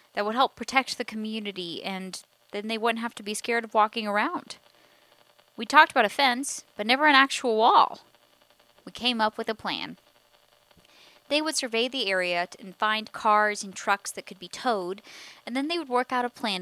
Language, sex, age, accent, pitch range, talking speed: English, female, 10-29, American, 190-265 Hz, 200 wpm